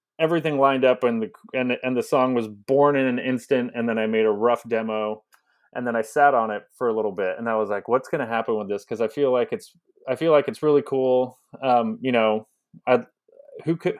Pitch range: 110-140 Hz